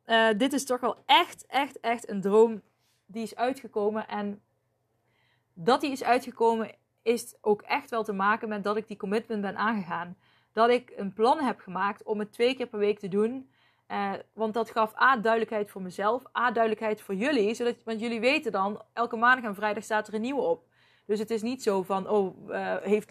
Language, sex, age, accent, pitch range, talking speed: Dutch, female, 20-39, Dutch, 210-245 Hz, 210 wpm